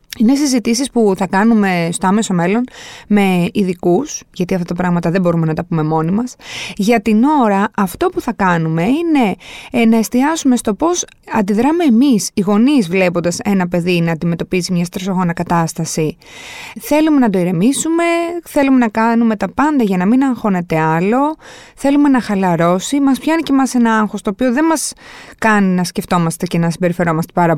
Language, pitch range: Greek, 180-270 Hz